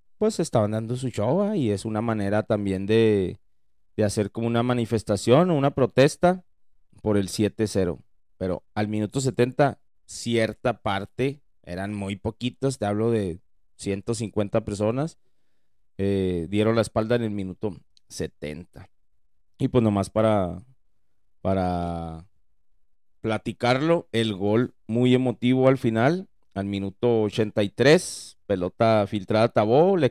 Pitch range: 100-120 Hz